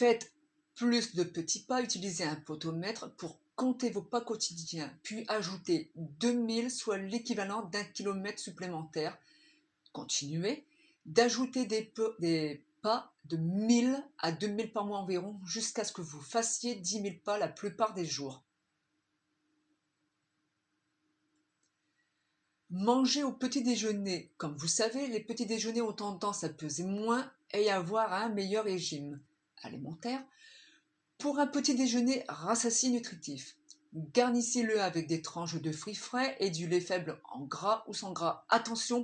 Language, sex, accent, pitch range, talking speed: French, female, French, 175-240 Hz, 135 wpm